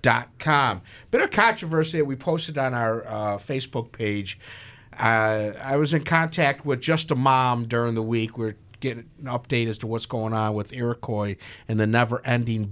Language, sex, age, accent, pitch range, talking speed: English, male, 50-69, American, 110-145 Hz, 190 wpm